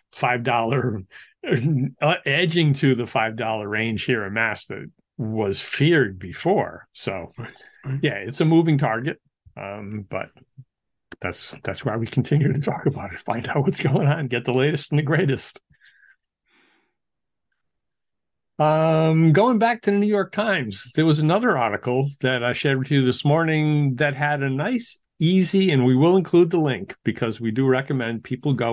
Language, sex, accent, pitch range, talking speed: English, male, American, 120-160 Hz, 165 wpm